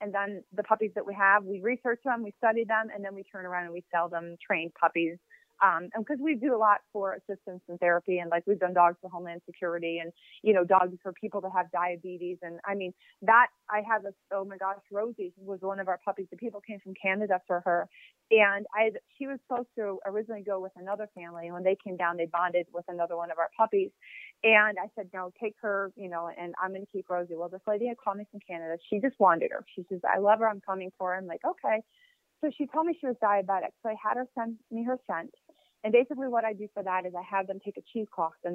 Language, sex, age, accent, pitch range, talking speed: English, female, 30-49, American, 180-220 Hz, 260 wpm